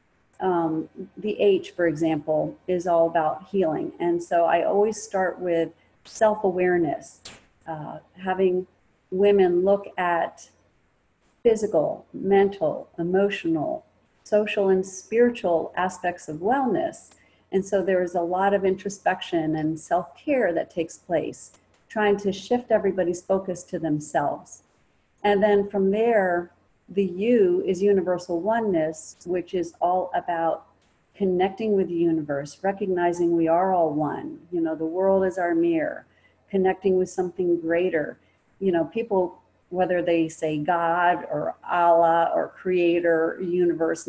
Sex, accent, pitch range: female, American, 170-200 Hz